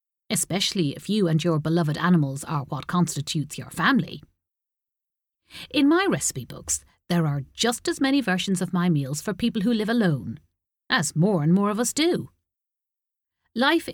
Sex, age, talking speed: female, 50-69, 165 wpm